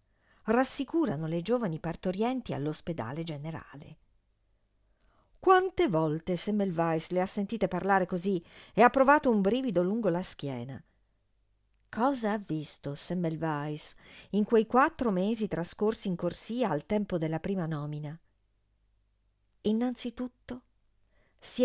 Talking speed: 110 wpm